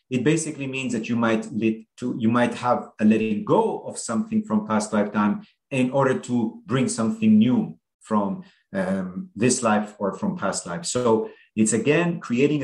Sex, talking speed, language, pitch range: male, 175 wpm, English, 110-170 Hz